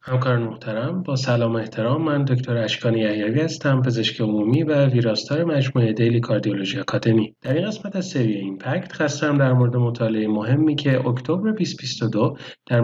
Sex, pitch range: male, 115-145 Hz